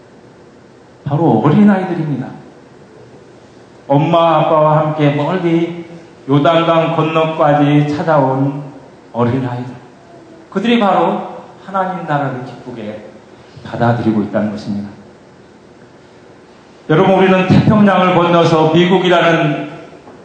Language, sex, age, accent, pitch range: Korean, male, 40-59, native, 120-170 Hz